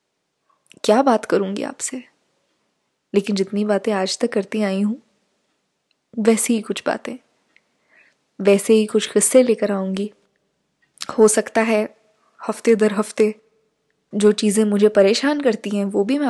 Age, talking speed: 20-39, 135 wpm